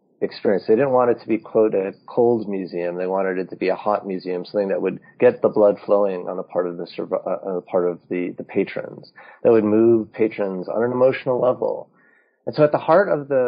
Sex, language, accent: male, English, American